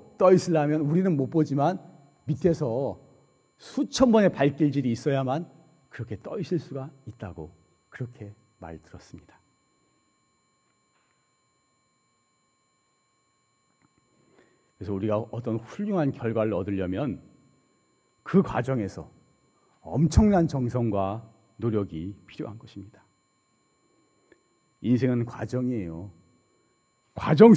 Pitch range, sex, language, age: 110-160 Hz, male, Korean, 40-59